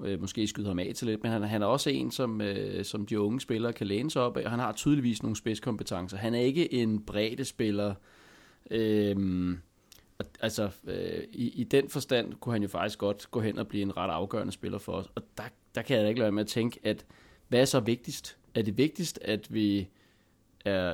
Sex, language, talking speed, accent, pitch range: male, Danish, 220 wpm, native, 100-120 Hz